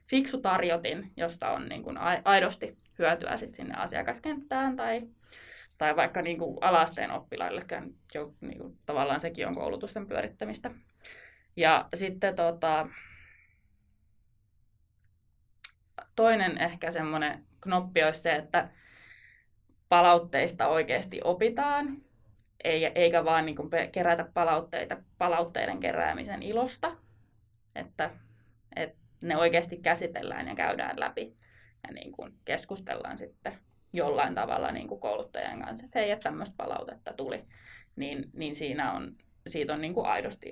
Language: Finnish